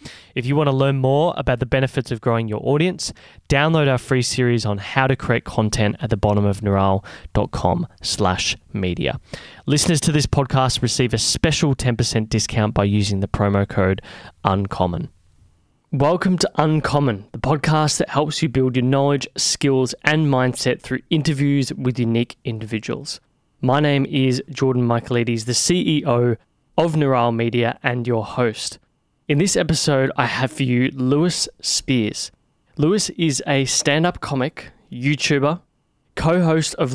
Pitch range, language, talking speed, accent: 120-145 Hz, English, 150 wpm, Australian